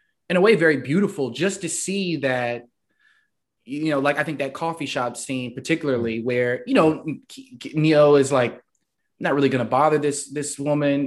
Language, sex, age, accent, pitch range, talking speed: English, male, 20-39, American, 130-160 Hz, 180 wpm